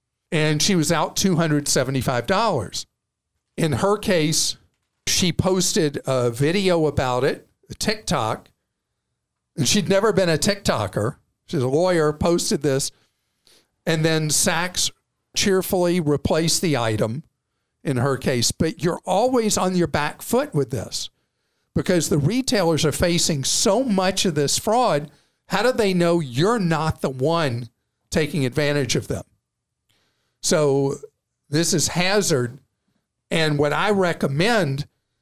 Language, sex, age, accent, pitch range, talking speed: English, male, 50-69, American, 145-190 Hz, 130 wpm